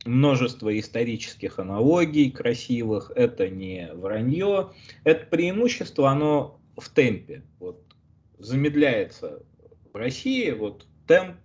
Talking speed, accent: 95 wpm, native